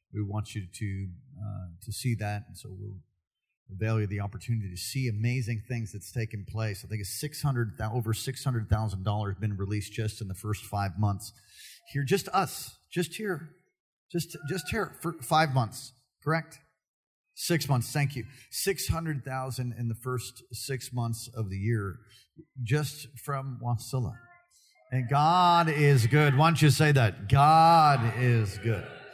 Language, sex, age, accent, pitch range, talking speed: English, male, 40-59, American, 105-130 Hz, 170 wpm